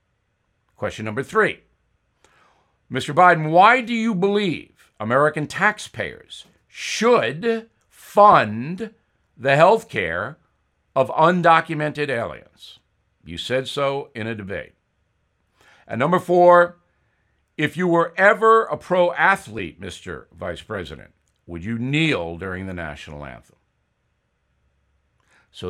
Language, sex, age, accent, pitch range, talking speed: English, male, 60-79, American, 110-180 Hz, 105 wpm